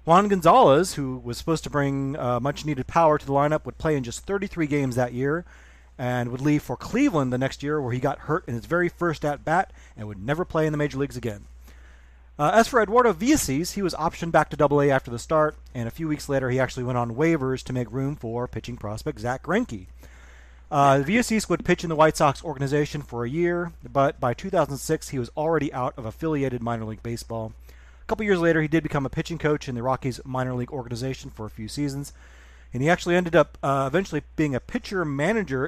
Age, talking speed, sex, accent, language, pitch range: 30-49, 225 wpm, male, American, English, 125-165 Hz